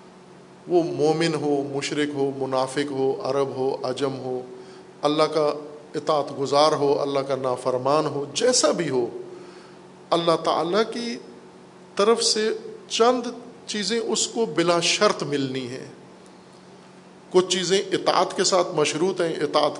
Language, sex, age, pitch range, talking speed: Urdu, male, 50-69, 140-185 Hz, 135 wpm